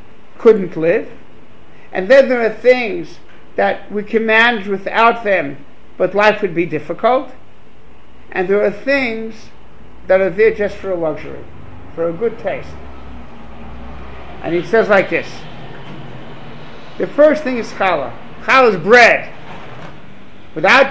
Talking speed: 135 wpm